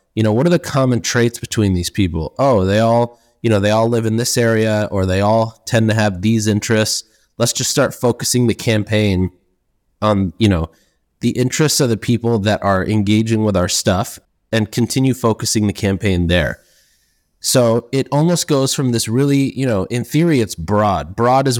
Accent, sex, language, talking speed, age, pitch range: American, male, English, 195 wpm, 20-39, 105-125 Hz